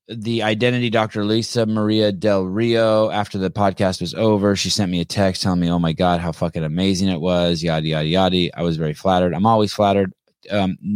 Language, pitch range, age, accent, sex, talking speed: English, 95-115 Hz, 20-39, American, male, 210 wpm